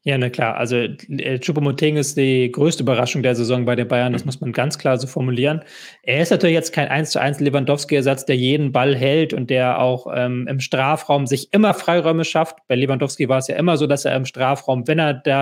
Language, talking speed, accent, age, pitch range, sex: German, 220 wpm, German, 20-39, 130-155 Hz, male